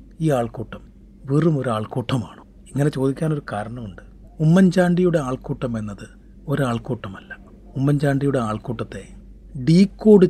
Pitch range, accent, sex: 120-155 Hz, native, male